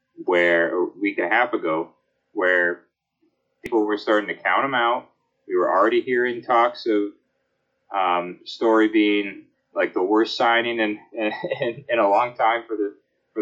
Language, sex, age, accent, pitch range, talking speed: English, male, 30-49, American, 100-140 Hz, 170 wpm